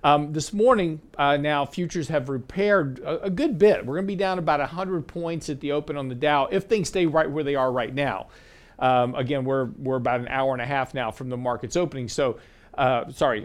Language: English